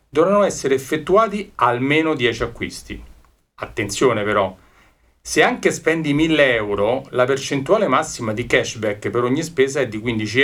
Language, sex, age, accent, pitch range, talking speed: Italian, male, 40-59, native, 110-140 Hz, 140 wpm